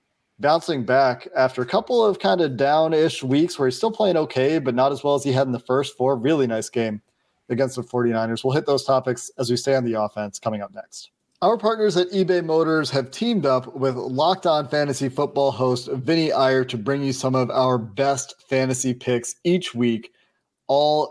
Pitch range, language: 130-155 Hz, English